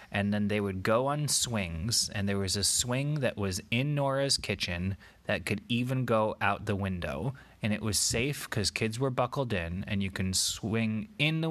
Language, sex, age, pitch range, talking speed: English, male, 20-39, 95-125 Hz, 205 wpm